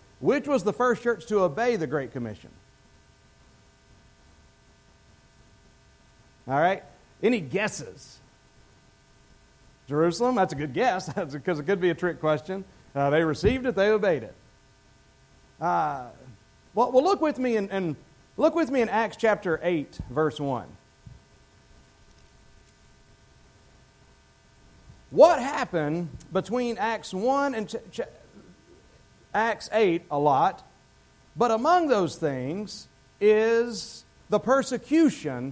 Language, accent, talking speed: English, American, 120 wpm